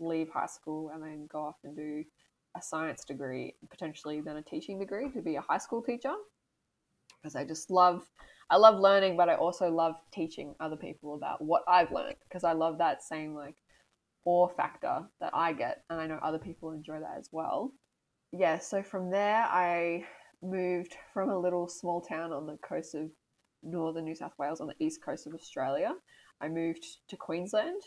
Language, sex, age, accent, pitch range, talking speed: English, female, 20-39, Australian, 160-190 Hz, 195 wpm